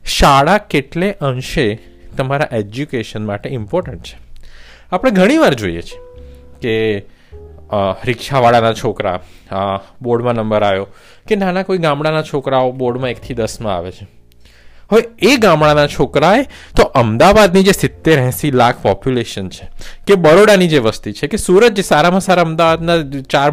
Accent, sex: native, male